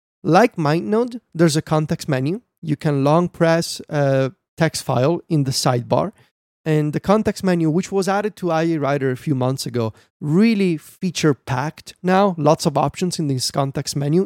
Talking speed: 170 wpm